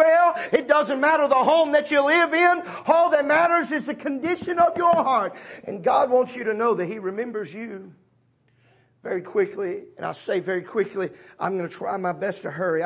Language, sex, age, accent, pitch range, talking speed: English, male, 40-59, American, 210-285 Hz, 205 wpm